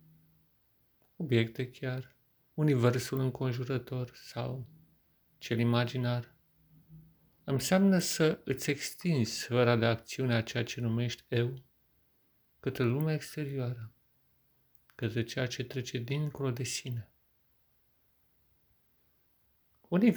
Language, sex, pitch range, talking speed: Romanian, male, 100-130 Hz, 90 wpm